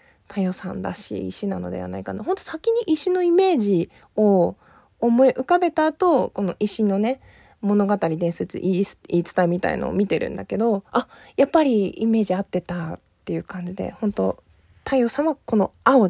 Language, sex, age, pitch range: Japanese, female, 20-39, 185-250 Hz